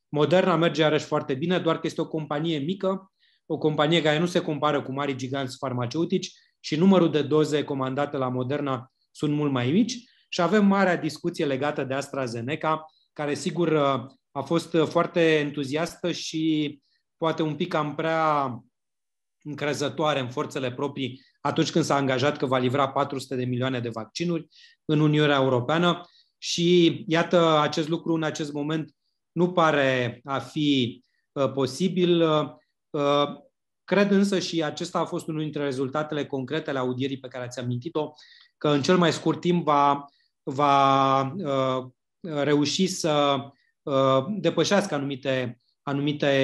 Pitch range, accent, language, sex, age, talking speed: 135-165 Hz, native, Romanian, male, 30-49, 150 wpm